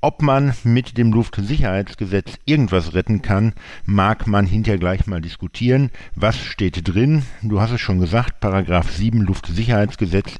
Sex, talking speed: male, 145 wpm